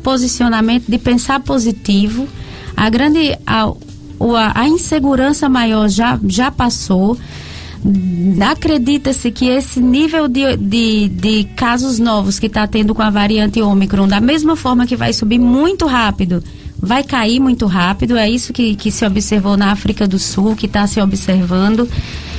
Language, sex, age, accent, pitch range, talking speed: Portuguese, female, 20-39, Brazilian, 210-250 Hz, 145 wpm